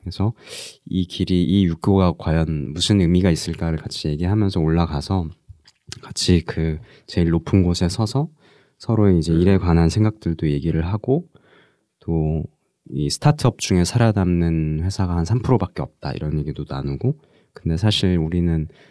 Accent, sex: native, male